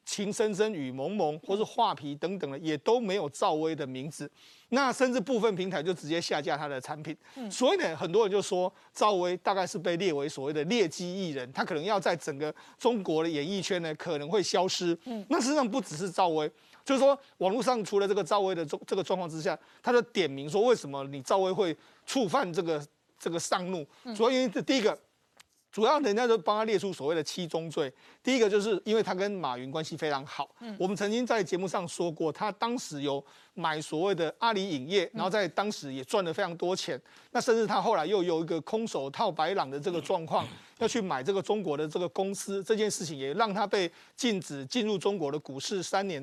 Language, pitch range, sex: Chinese, 160-215 Hz, male